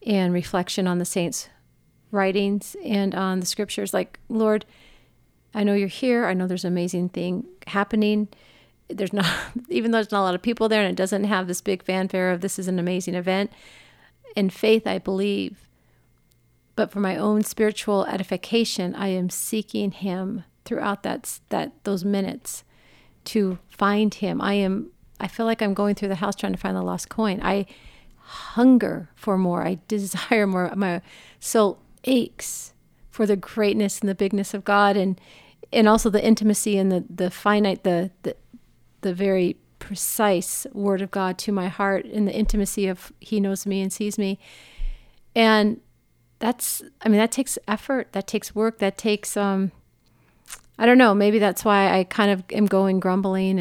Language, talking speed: English, 175 wpm